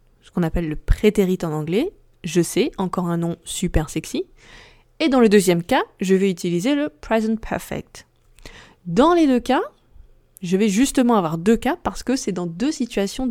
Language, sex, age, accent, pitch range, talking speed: French, female, 20-39, French, 175-235 Hz, 185 wpm